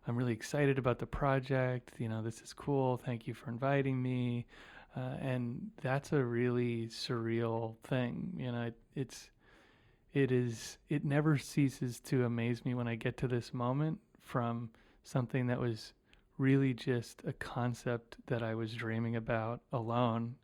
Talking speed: 160 wpm